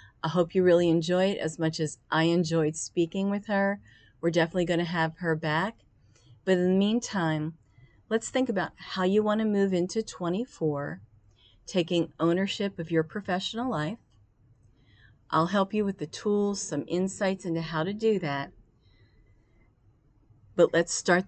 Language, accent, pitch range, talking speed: English, American, 155-190 Hz, 160 wpm